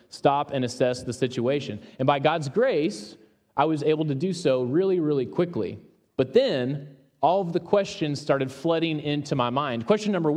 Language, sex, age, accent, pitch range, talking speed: English, male, 30-49, American, 130-175 Hz, 180 wpm